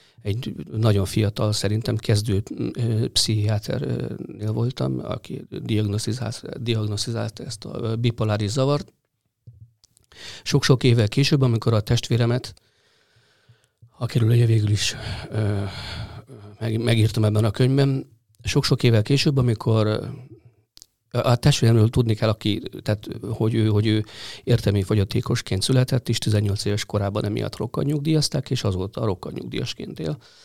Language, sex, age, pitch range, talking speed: Hungarian, male, 50-69, 105-125 Hz, 105 wpm